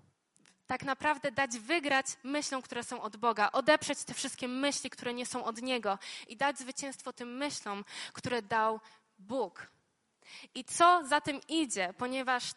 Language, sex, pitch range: Polish, female, 230-285 Hz